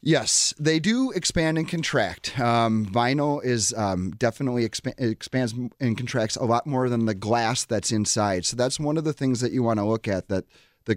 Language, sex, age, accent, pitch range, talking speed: English, male, 30-49, American, 110-130 Hz, 195 wpm